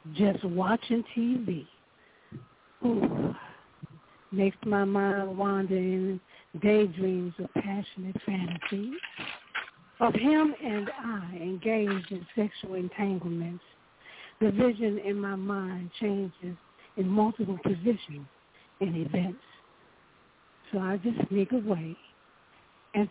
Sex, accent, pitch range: female, American, 185-215 Hz